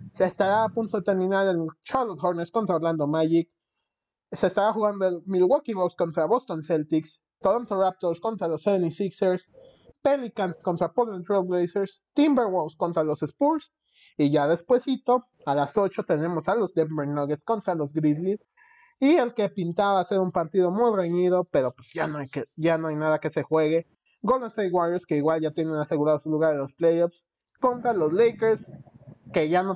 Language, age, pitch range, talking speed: Spanish, 30-49, 150-195 Hz, 175 wpm